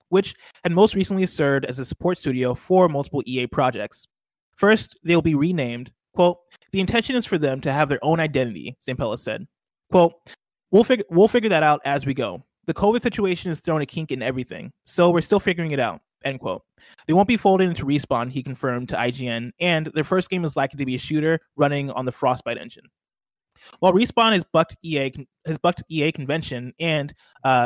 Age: 20-39